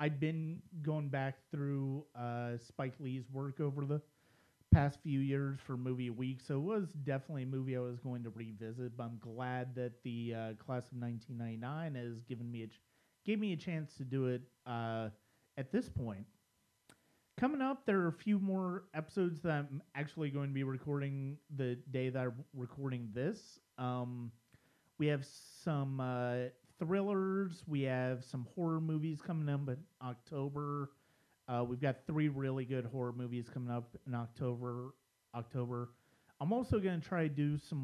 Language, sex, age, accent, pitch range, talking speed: English, male, 30-49, American, 120-150 Hz, 180 wpm